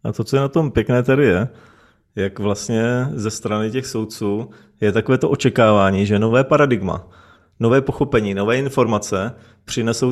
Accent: native